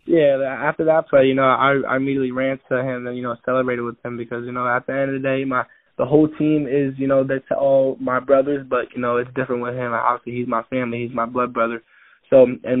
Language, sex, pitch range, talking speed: English, male, 120-135 Hz, 260 wpm